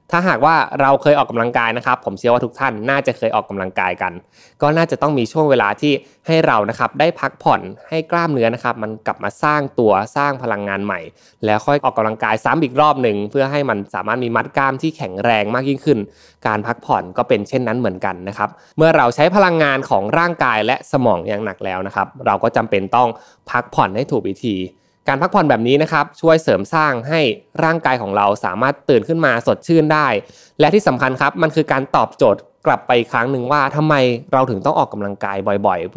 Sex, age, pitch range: male, 20-39, 110-150 Hz